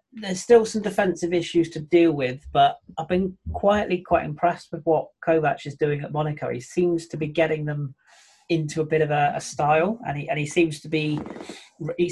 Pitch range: 130-165 Hz